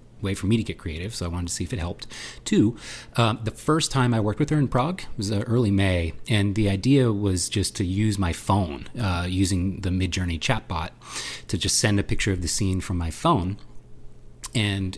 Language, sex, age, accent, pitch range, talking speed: English, male, 30-49, American, 95-120 Hz, 225 wpm